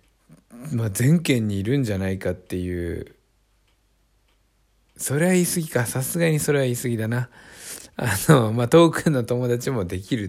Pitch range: 95-145 Hz